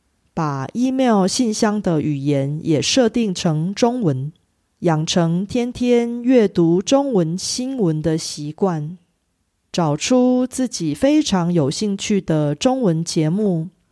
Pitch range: 160-220 Hz